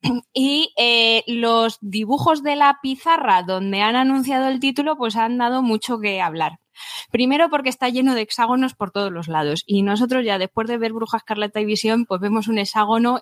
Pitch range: 195-240 Hz